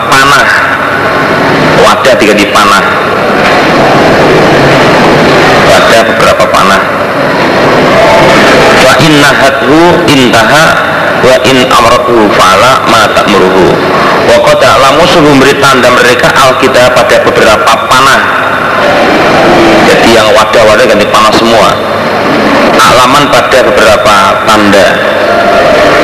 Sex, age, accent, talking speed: male, 40-59, native, 85 wpm